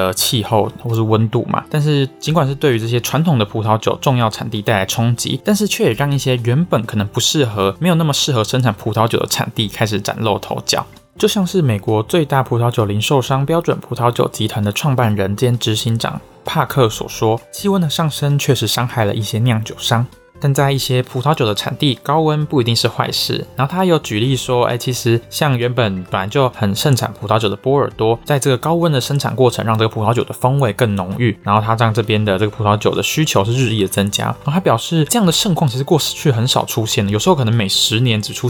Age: 20-39